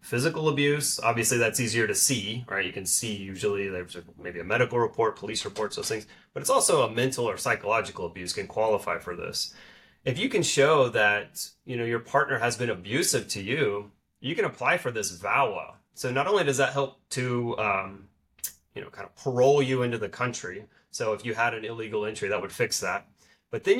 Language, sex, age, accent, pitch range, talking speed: English, male, 30-49, American, 105-130 Hz, 210 wpm